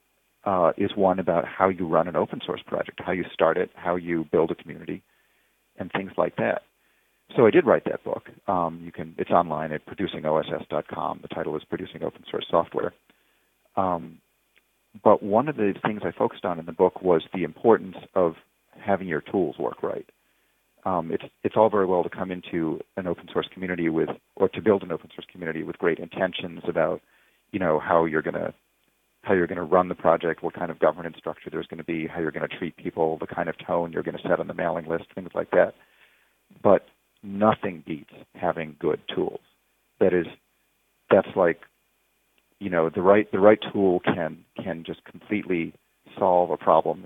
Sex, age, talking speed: male, 40-59, 200 wpm